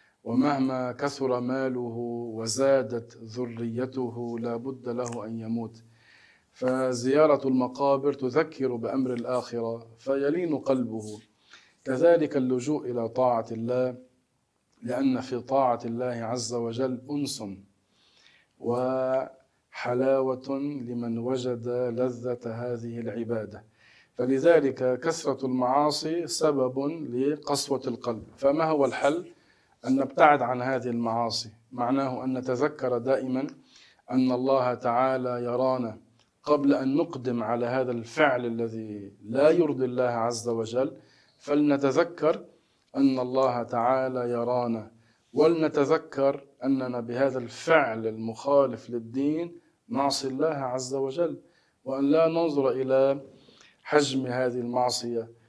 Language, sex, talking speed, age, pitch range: Arabic, male, 95 wpm, 50-69, 120-135 Hz